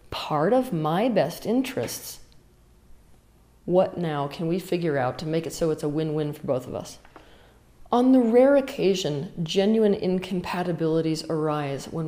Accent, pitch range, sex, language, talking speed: American, 150-180 Hz, female, English, 150 wpm